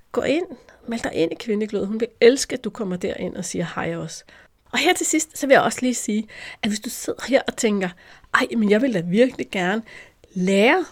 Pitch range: 185-235 Hz